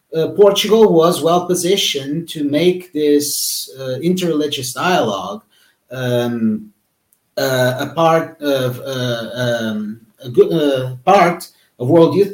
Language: English